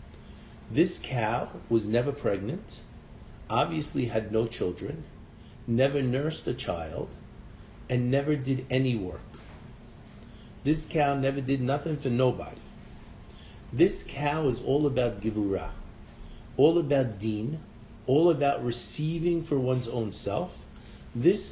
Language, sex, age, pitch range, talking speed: English, male, 50-69, 110-145 Hz, 115 wpm